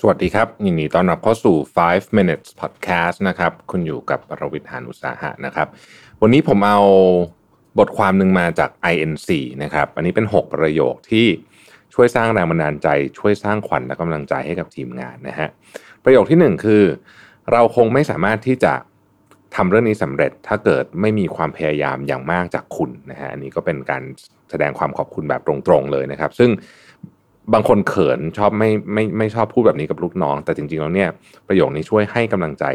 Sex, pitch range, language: male, 75-110 Hz, Thai